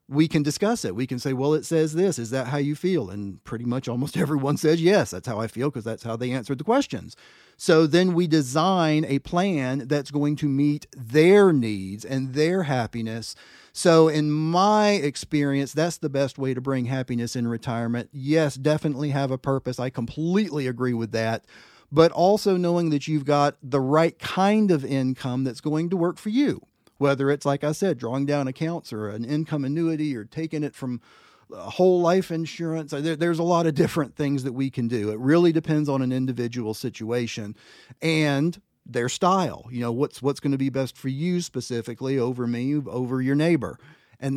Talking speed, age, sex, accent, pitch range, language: 195 wpm, 40-59, male, American, 125-160 Hz, English